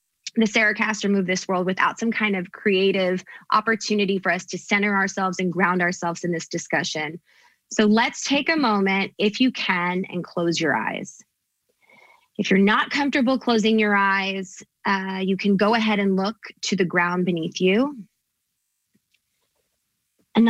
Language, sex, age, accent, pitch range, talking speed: English, female, 20-39, American, 185-220 Hz, 160 wpm